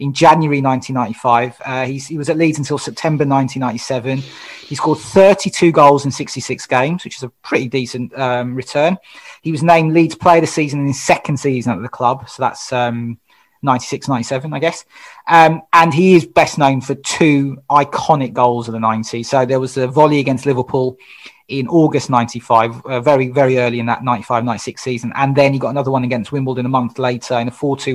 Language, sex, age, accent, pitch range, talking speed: English, male, 30-49, British, 125-155 Hz, 195 wpm